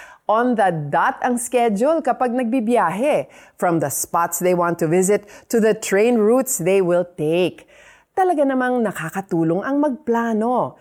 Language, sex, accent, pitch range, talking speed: Filipino, female, native, 175-270 Hz, 145 wpm